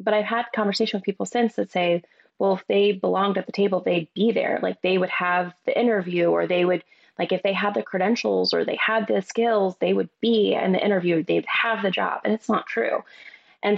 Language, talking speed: English, 235 wpm